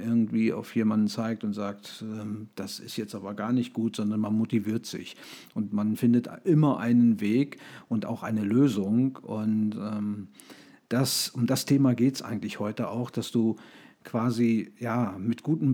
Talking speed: 155 wpm